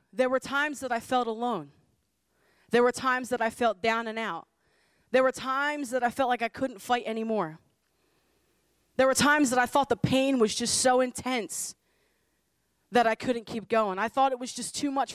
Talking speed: 200 wpm